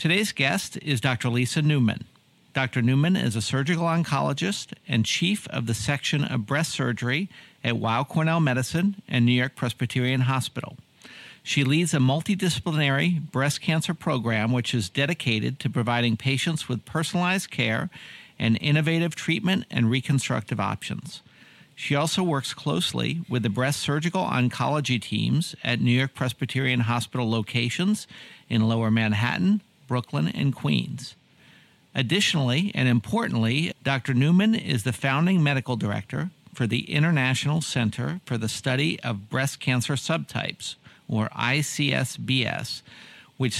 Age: 50-69